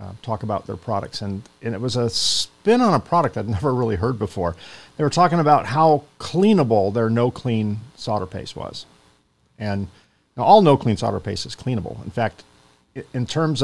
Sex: male